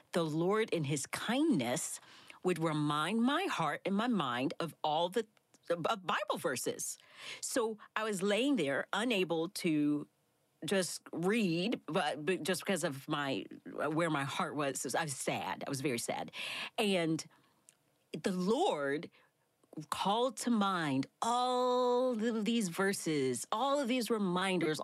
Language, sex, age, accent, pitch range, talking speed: English, female, 40-59, American, 160-225 Hz, 135 wpm